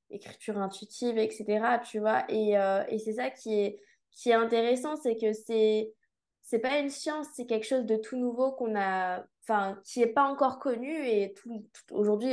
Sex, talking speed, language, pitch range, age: female, 190 wpm, French, 205-240 Hz, 20-39